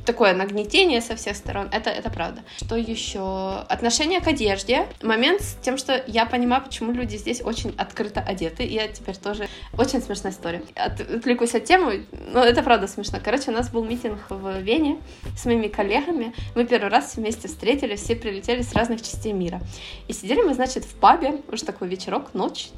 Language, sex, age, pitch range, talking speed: Ukrainian, female, 20-39, 210-260 Hz, 185 wpm